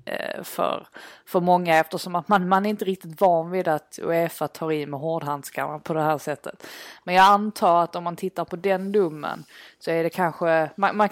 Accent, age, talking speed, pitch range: native, 20-39, 205 wpm, 160-190 Hz